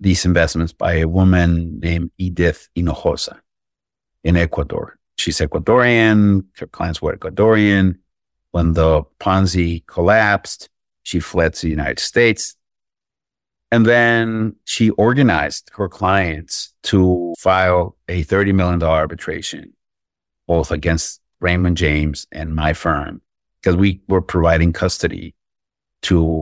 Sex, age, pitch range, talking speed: male, 50-69, 80-100 Hz, 115 wpm